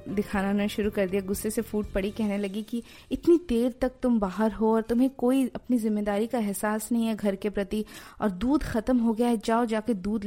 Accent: native